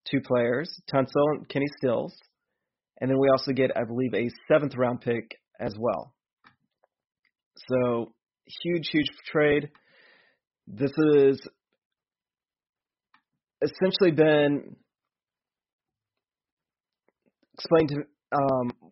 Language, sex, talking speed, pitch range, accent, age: English, male, 100 wpm, 120-145 Hz, American, 30-49